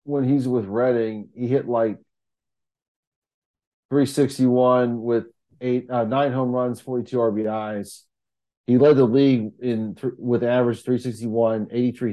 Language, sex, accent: English, male, American